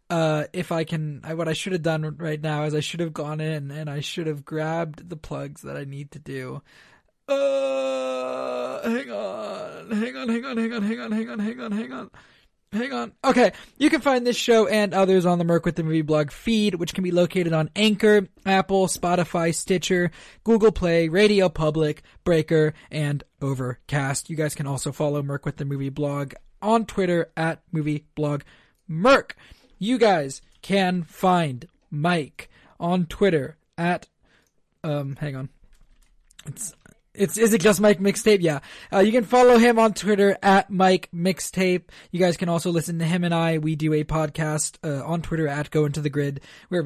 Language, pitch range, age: English, 150-205 Hz, 20-39